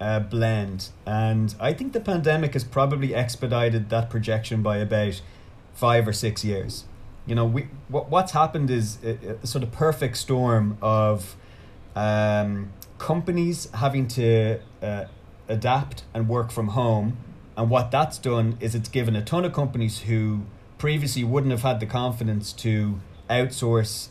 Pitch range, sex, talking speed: 105-125 Hz, male, 155 wpm